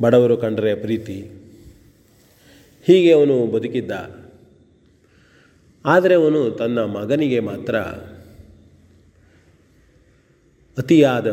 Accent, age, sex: native, 40-59, male